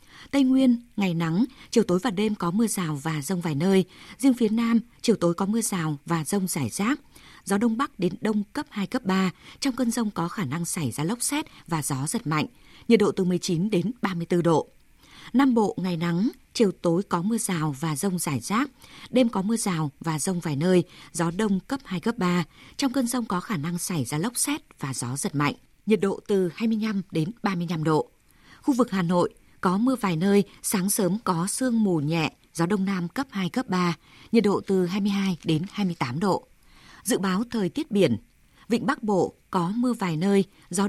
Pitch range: 170-225 Hz